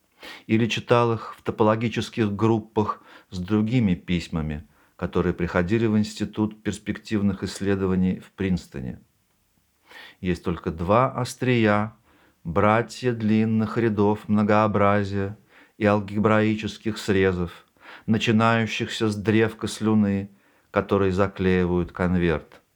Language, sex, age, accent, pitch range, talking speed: Russian, male, 50-69, native, 95-110 Hz, 90 wpm